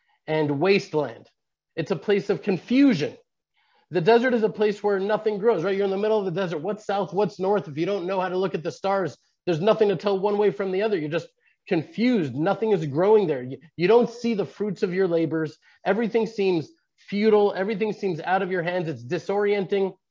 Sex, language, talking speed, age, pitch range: male, English, 215 wpm, 30-49, 175-220 Hz